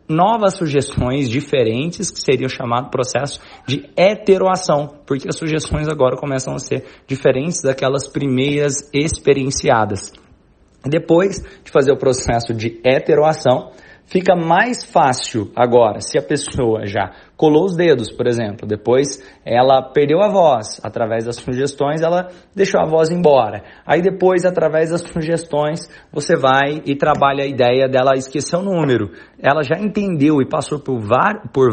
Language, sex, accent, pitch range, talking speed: Portuguese, male, Brazilian, 125-165 Hz, 140 wpm